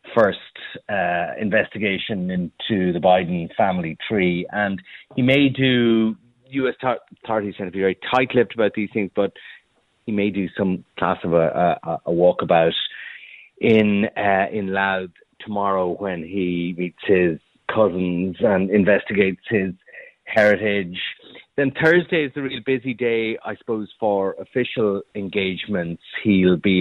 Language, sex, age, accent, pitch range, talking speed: English, male, 30-49, Irish, 95-115 Hz, 135 wpm